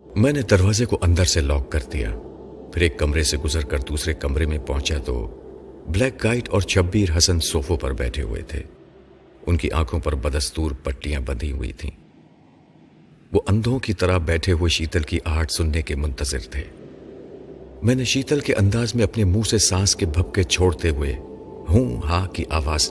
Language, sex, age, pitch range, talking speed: Urdu, male, 50-69, 75-95 Hz, 180 wpm